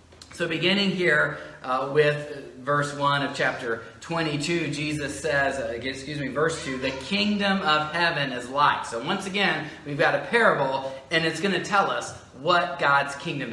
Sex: male